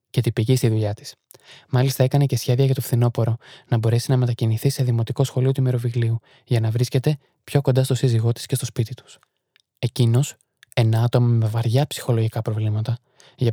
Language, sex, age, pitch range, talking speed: Greek, male, 20-39, 120-135 Hz, 175 wpm